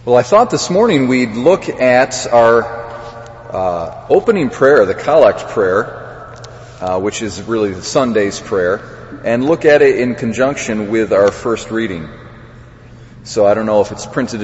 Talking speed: 160 wpm